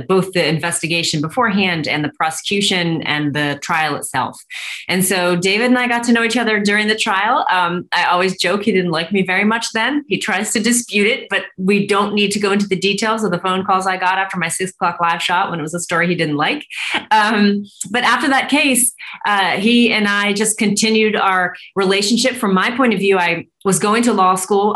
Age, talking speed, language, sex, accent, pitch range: 30-49, 225 wpm, English, female, American, 170-210 Hz